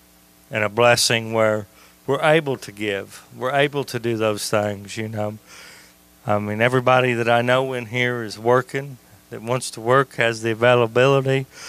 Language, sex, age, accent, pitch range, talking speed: English, male, 40-59, American, 105-130 Hz, 170 wpm